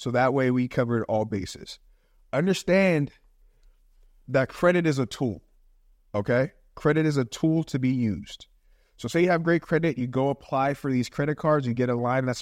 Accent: American